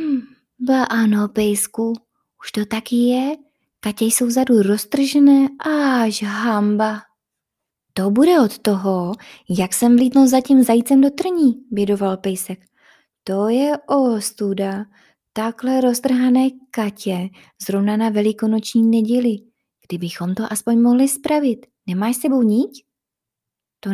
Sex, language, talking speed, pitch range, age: female, Czech, 120 wpm, 195-265 Hz, 20-39